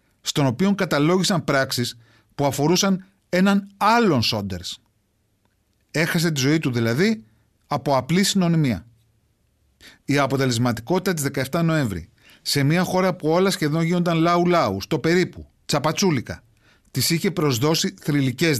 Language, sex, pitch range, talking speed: Greek, male, 115-170 Hz, 120 wpm